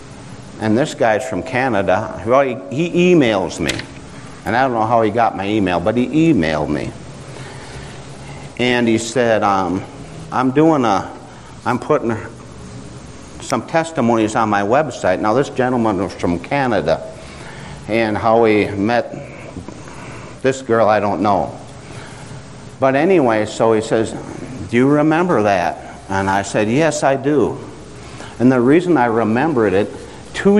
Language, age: English, 60-79